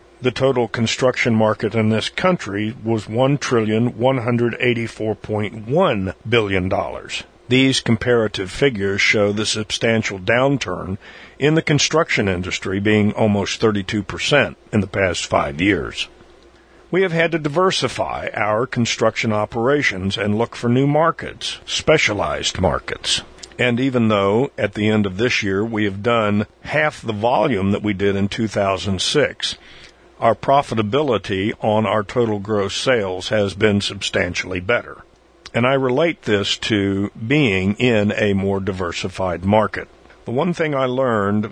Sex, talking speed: male, 140 wpm